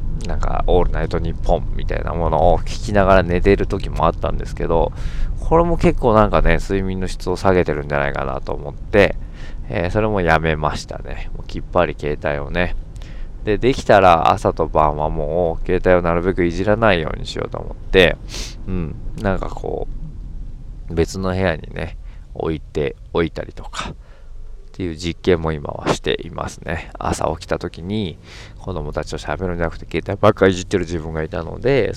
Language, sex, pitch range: Japanese, male, 80-100 Hz